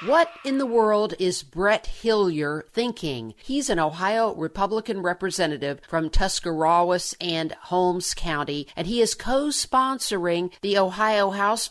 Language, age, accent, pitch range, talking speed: English, 50-69, American, 170-220 Hz, 130 wpm